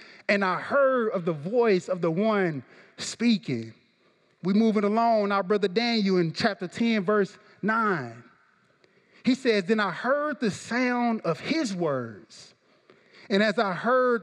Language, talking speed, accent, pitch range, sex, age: English, 150 wpm, American, 180-225 Hz, male, 30-49